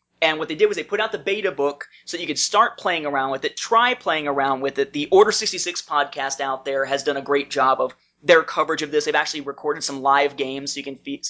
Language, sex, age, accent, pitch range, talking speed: English, male, 30-49, American, 145-205 Hz, 265 wpm